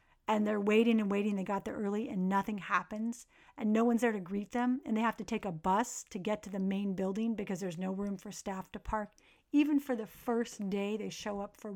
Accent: American